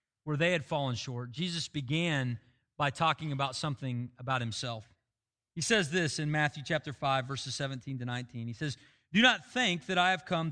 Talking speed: 190 wpm